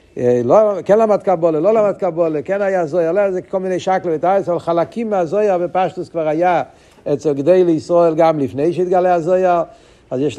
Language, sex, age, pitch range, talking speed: Hebrew, male, 60-79, 160-200 Hz, 175 wpm